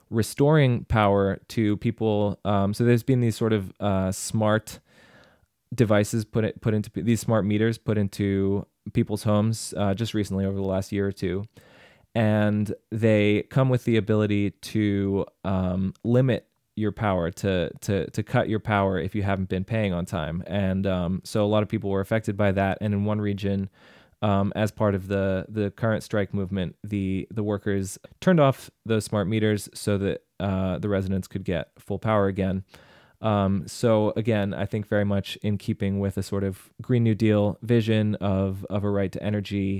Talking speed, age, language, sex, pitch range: 185 wpm, 20-39, English, male, 95-110 Hz